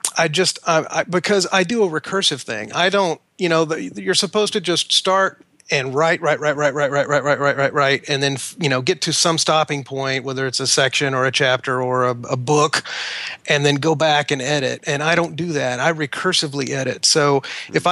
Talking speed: 215 wpm